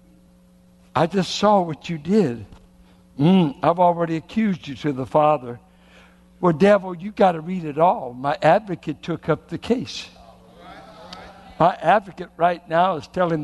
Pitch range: 145-185 Hz